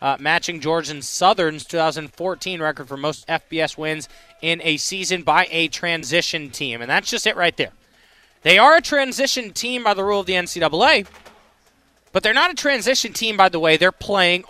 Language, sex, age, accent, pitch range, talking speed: English, male, 20-39, American, 155-200 Hz, 185 wpm